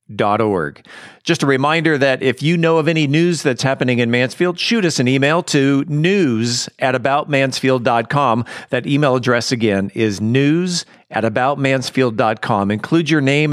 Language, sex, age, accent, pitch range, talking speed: English, male, 50-69, American, 115-155 Hz, 145 wpm